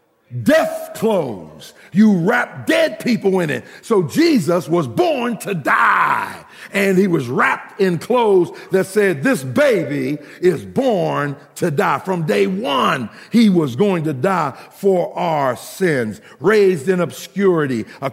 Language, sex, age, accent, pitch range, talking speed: English, male, 50-69, American, 130-205 Hz, 140 wpm